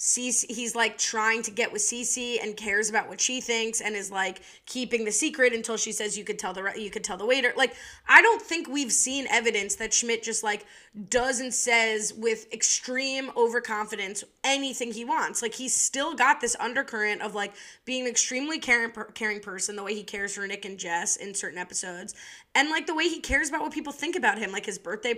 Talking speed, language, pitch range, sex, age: 215 wpm, English, 210-265 Hz, female, 20-39